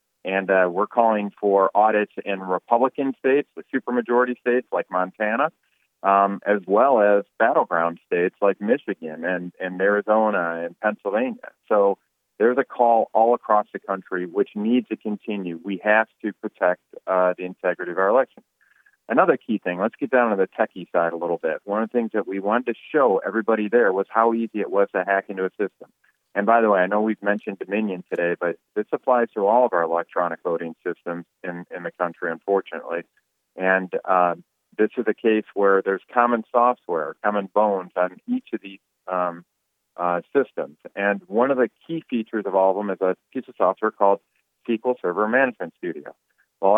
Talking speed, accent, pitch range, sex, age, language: 190 wpm, American, 95-110 Hz, male, 30-49, English